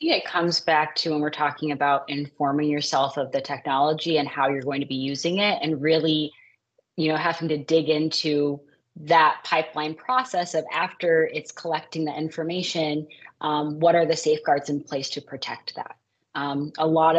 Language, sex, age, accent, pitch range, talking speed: English, female, 20-39, American, 150-170 Hz, 180 wpm